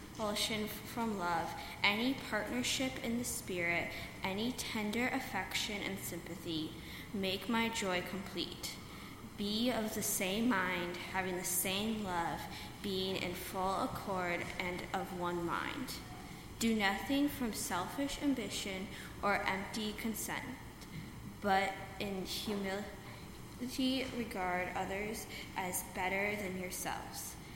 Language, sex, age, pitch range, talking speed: English, female, 10-29, 185-225 Hz, 110 wpm